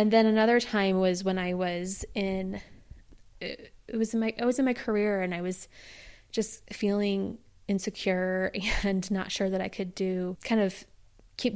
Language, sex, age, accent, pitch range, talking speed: English, female, 20-39, American, 185-225 Hz, 175 wpm